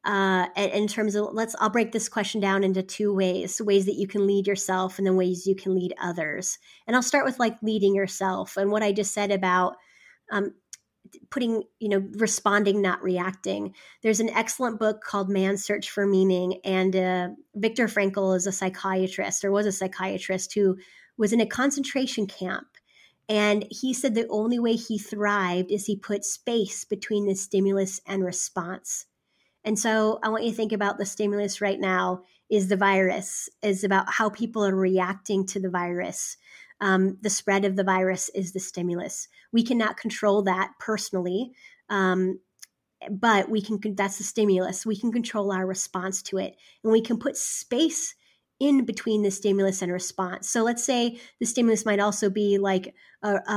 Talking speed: 180 wpm